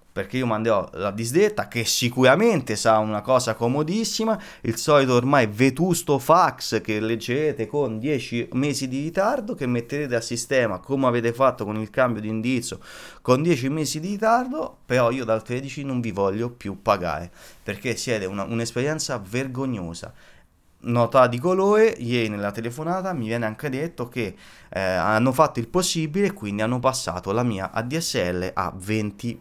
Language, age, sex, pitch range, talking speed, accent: Italian, 20-39, male, 105-140 Hz, 160 wpm, native